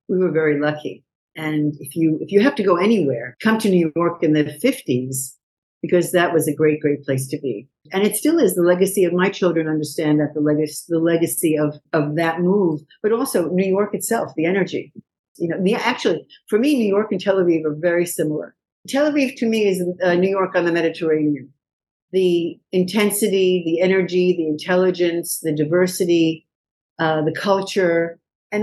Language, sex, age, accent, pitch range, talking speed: Hebrew, female, 60-79, American, 155-190 Hz, 195 wpm